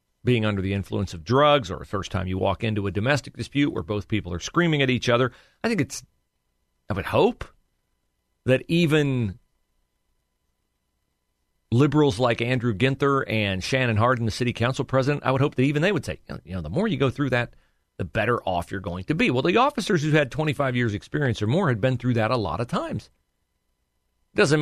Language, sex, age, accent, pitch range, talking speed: English, male, 40-59, American, 100-135 Hz, 210 wpm